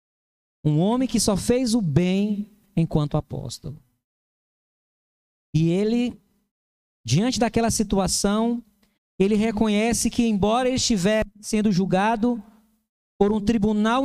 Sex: male